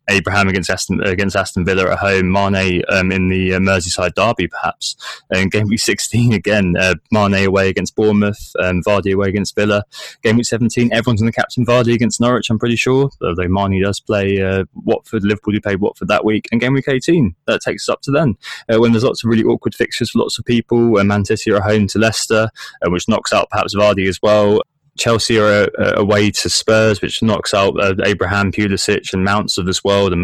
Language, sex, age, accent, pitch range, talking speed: English, male, 20-39, British, 95-110 Hz, 215 wpm